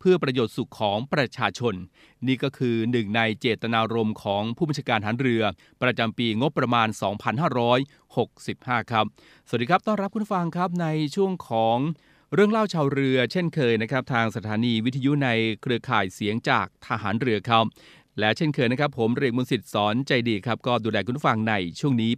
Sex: male